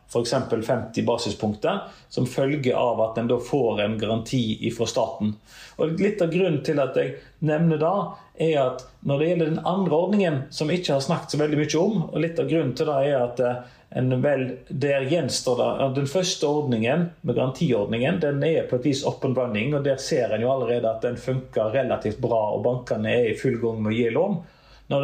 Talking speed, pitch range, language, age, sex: 200 wpm, 120-155 Hz, English, 40-59, male